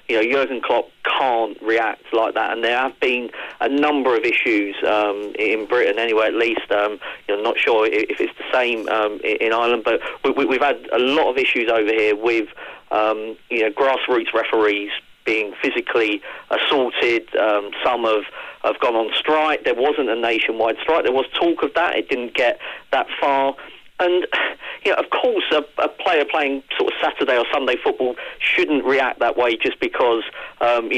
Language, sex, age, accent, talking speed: English, male, 40-59, British, 190 wpm